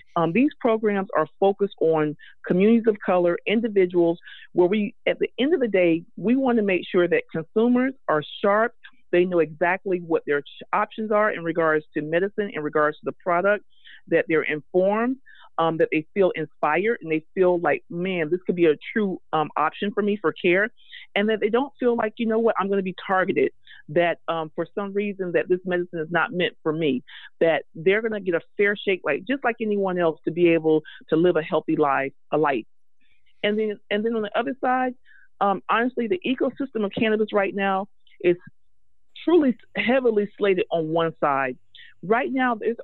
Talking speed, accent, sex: 200 wpm, American, female